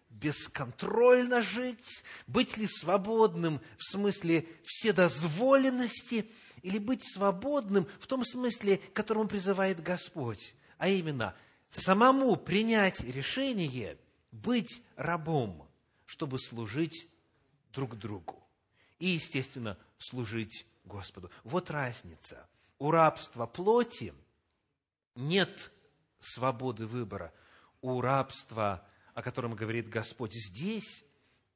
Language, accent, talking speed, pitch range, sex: Russian, native, 90 wpm, 115-185 Hz, male